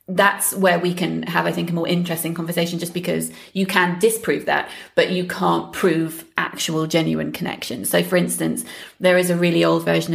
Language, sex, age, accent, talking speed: English, female, 30-49, British, 195 wpm